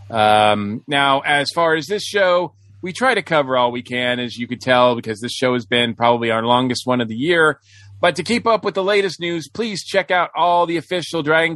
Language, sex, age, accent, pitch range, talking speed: English, male, 40-59, American, 120-155 Hz, 235 wpm